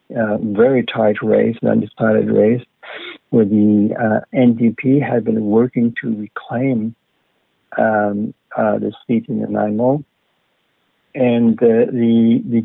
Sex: male